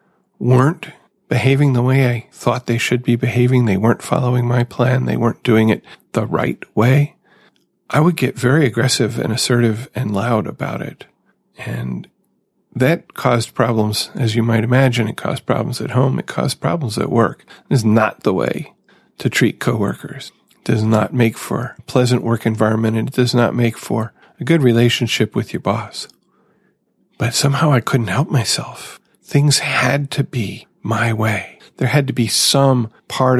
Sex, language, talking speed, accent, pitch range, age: male, English, 175 wpm, American, 110-135 Hz, 40-59